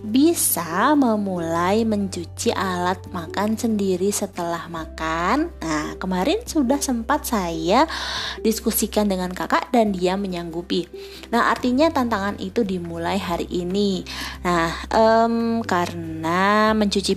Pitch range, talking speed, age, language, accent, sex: 175-225 Hz, 105 wpm, 20-39, Indonesian, native, female